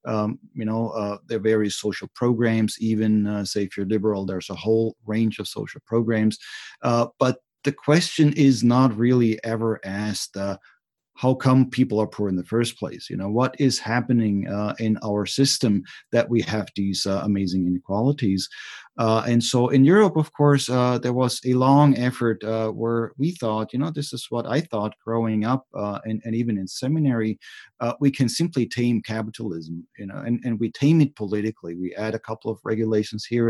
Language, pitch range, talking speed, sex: English, 110-130 Hz, 195 wpm, male